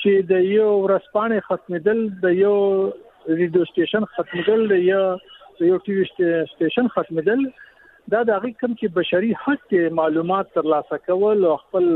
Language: Urdu